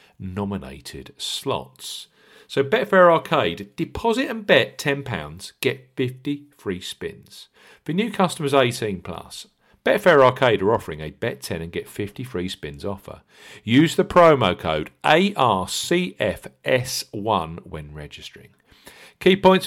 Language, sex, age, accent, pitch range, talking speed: English, male, 50-69, British, 95-145 Hz, 120 wpm